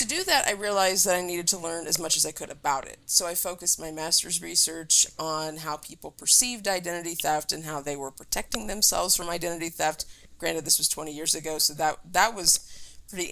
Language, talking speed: English, 220 wpm